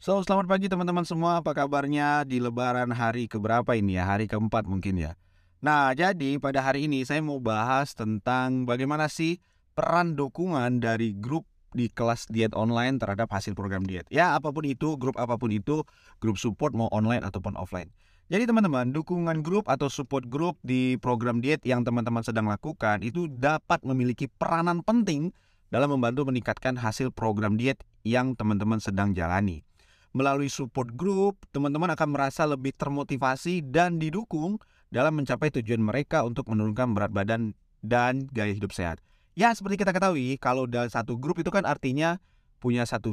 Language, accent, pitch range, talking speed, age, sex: Indonesian, native, 110-155 Hz, 160 wpm, 20-39, male